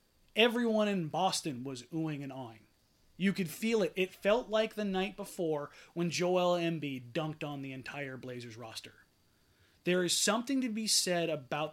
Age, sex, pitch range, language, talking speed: 30-49, male, 155-215 Hz, English, 170 wpm